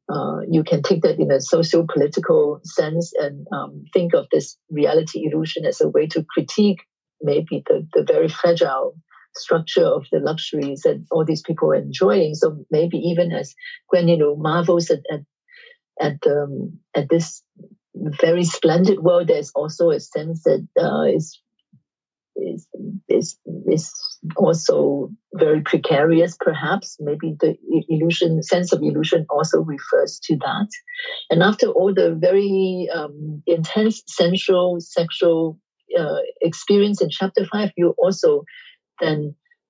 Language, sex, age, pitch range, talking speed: English, female, 50-69, 165-265 Hz, 145 wpm